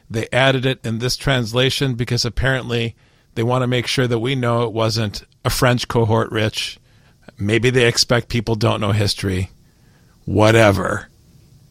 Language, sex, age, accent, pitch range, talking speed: English, male, 50-69, American, 115-140 Hz, 155 wpm